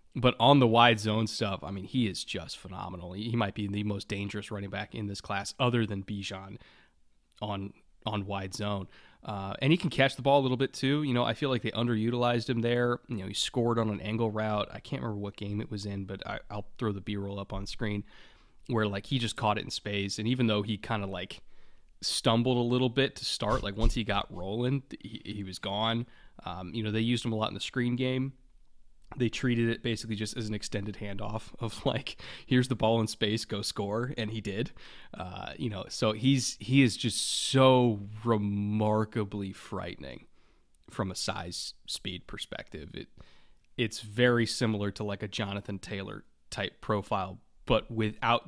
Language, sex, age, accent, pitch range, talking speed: English, male, 20-39, American, 100-120 Hz, 205 wpm